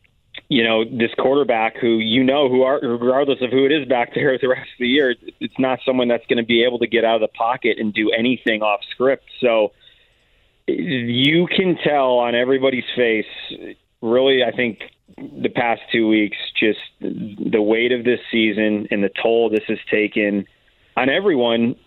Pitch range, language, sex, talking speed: 105-125 Hz, English, male, 185 wpm